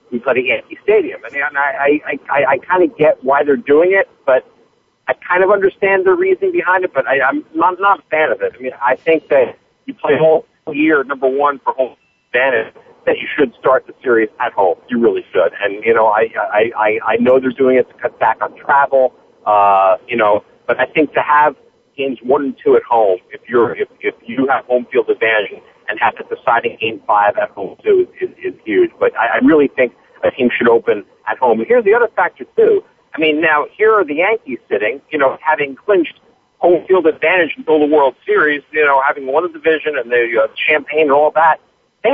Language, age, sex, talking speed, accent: English, 50-69, male, 235 wpm, American